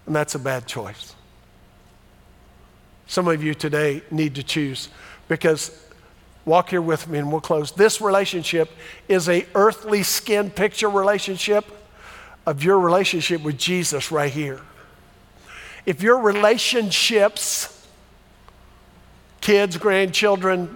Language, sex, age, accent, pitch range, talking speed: English, male, 50-69, American, 150-205 Hz, 115 wpm